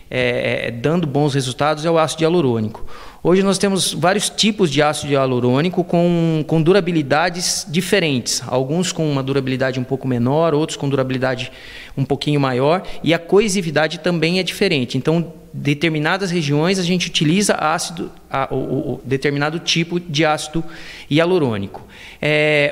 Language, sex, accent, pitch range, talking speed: Portuguese, male, Brazilian, 135-175 Hz, 150 wpm